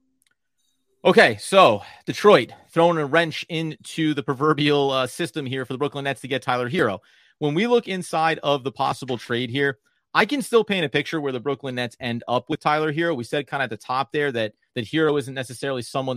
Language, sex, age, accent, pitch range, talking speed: English, male, 30-49, American, 125-165 Hz, 215 wpm